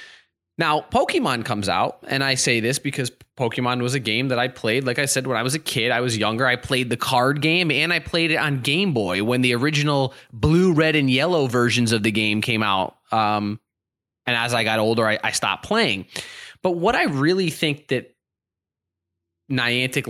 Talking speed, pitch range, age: 205 wpm, 115-165 Hz, 20-39